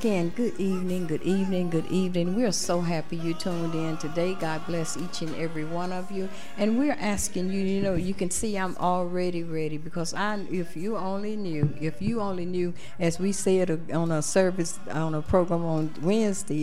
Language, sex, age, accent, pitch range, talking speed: English, female, 60-79, American, 155-190 Hz, 200 wpm